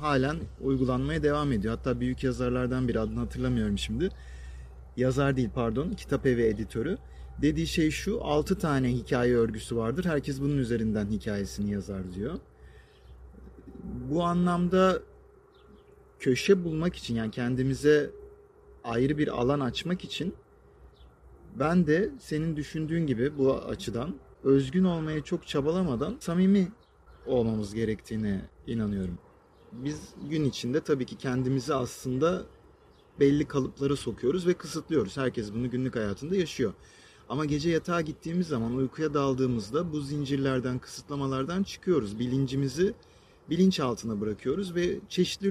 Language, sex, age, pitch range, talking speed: Turkish, male, 40-59, 120-155 Hz, 120 wpm